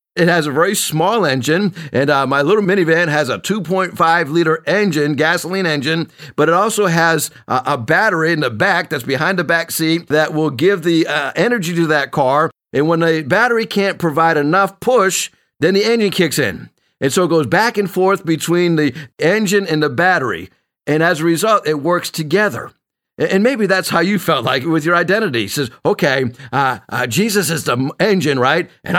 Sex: male